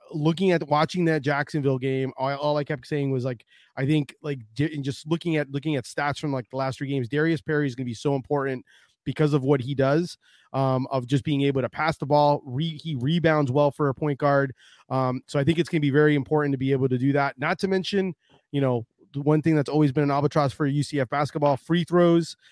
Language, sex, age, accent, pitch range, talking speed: English, male, 20-39, American, 135-155 Hz, 240 wpm